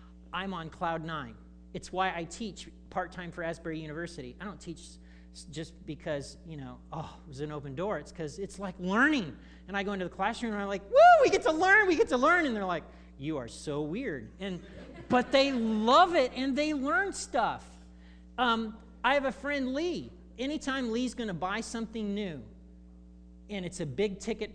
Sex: male